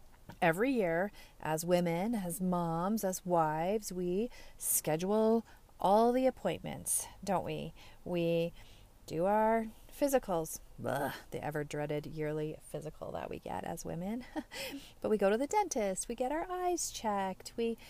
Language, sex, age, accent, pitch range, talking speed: English, female, 30-49, American, 180-255 Hz, 135 wpm